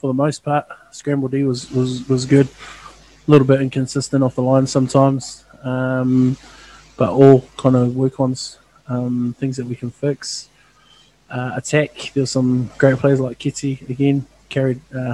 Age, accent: 20-39, Australian